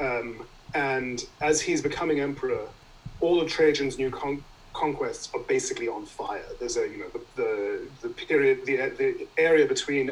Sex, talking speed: male, 155 wpm